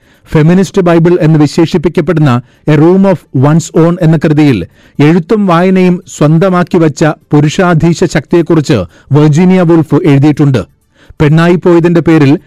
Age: 40-59